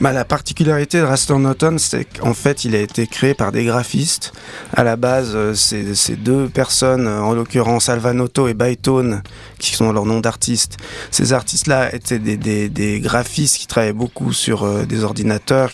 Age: 20-39